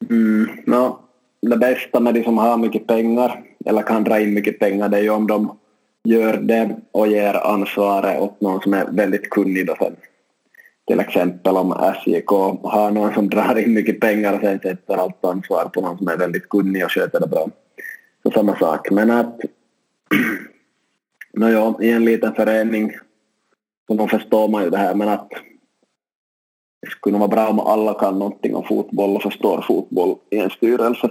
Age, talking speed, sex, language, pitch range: 20-39, 185 wpm, male, Swedish, 100-115 Hz